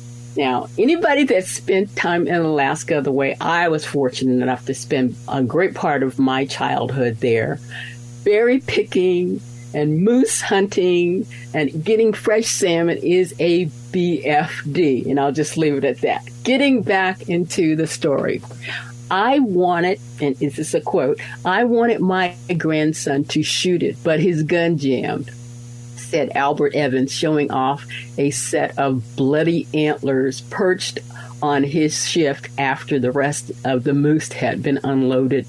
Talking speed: 145 wpm